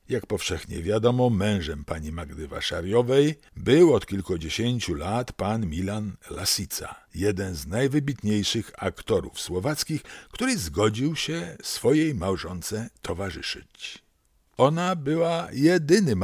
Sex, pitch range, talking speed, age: male, 95-135 Hz, 105 wpm, 60-79